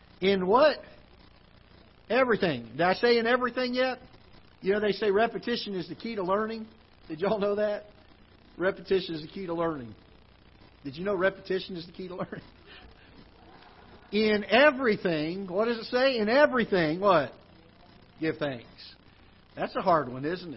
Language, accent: English, American